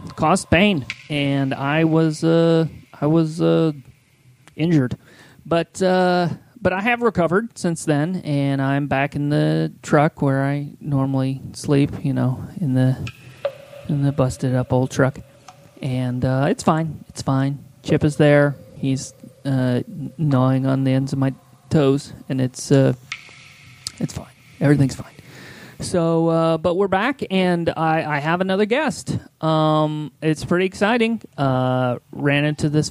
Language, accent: English, American